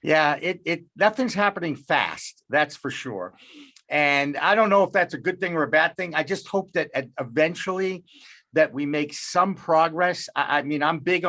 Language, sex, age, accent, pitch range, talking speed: English, male, 50-69, American, 140-180 Hz, 195 wpm